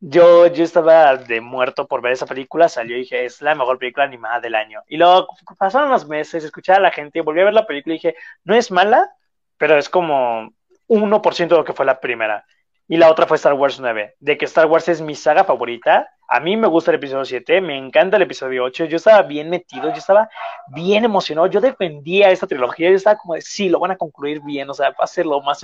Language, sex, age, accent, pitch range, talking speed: Spanish, male, 20-39, Mexican, 150-210 Hz, 245 wpm